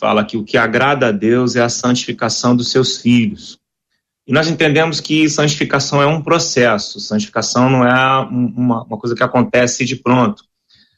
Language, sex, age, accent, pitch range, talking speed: Portuguese, male, 30-49, Brazilian, 120-140 Hz, 170 wpm